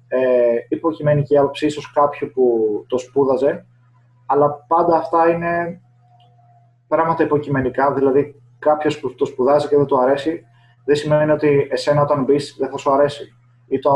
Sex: male